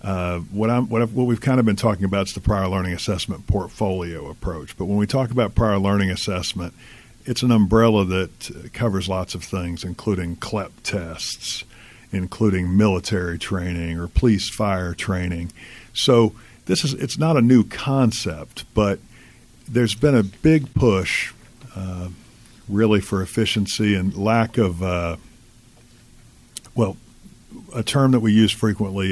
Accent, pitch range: American, 95-115 Hz